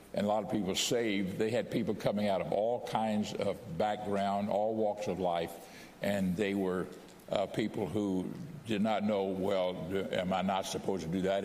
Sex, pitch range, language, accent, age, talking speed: male, 95-125 Hz, English, American, 60-79, 195 wpm